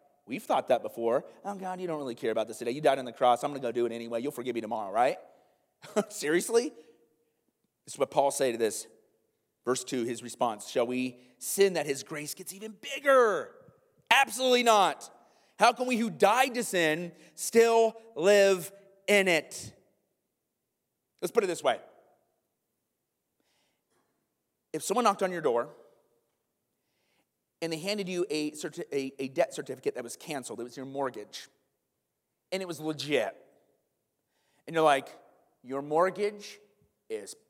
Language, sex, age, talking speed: English, male, 30-49, 160 wpm